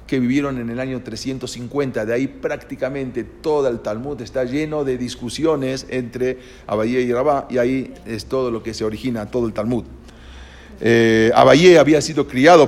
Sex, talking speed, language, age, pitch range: male, 170 wpm, English, 40-59, 115-135 Hz